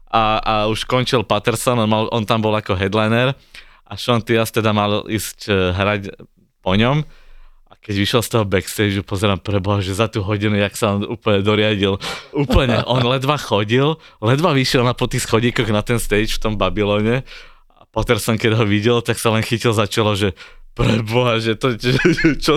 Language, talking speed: Slovak, 180 wpm